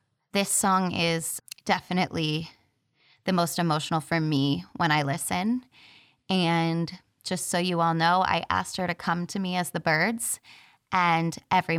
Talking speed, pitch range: 155 wpm, 160-180 Hz